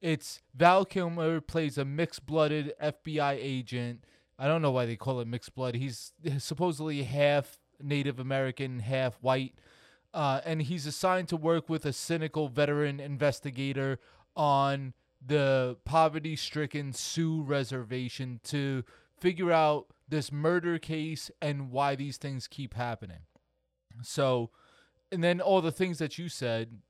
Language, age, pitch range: English, 20-39, 125-155 Hz